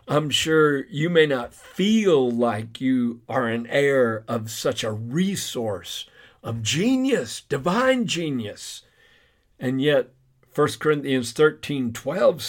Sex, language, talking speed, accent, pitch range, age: male, English, 115 wpm, American, 130-185 Hz, 50-69